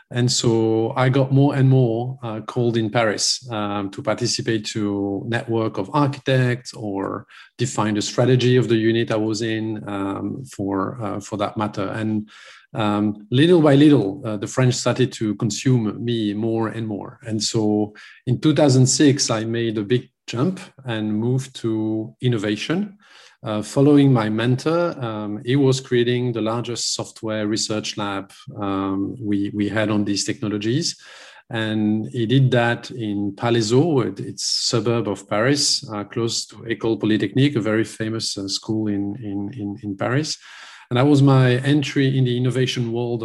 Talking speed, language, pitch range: 160 wpm, English, 105-130 Hz